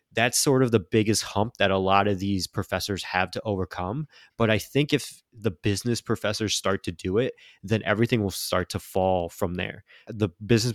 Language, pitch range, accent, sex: English, 95-115 Hz, American, male